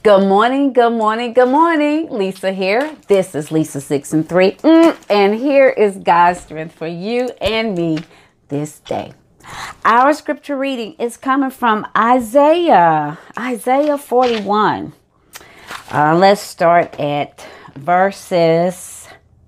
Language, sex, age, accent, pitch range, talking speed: English, female, 40-59, American, 175-260 Hz, 120 wpm